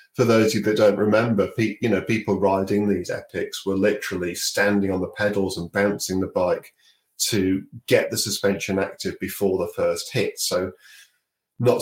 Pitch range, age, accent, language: 95-115 Hz, 40-59, British, English